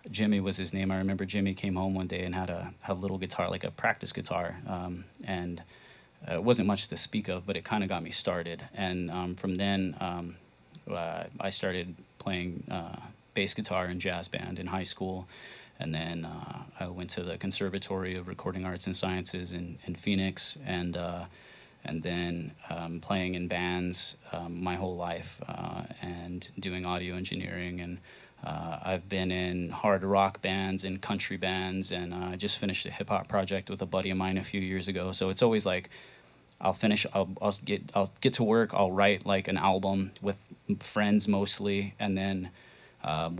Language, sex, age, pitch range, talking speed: English, male, 20-39, 90-100 Hz, 195 wpm